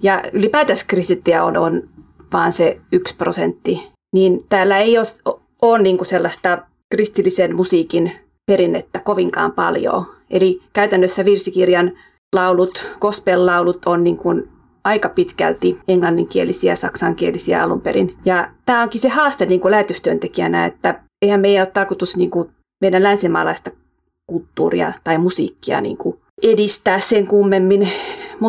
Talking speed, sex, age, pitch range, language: 115 wpm, female, 30-49, 185-230 Hz, Finnish